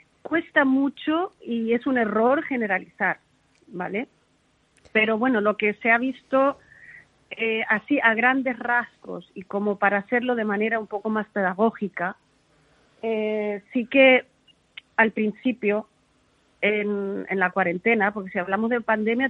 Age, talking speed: 40-59, 135 wpm